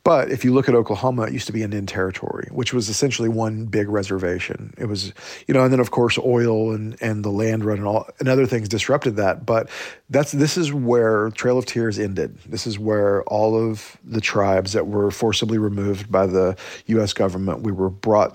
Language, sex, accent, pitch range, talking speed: English, male, American, 100-120 Hz, 215 wpm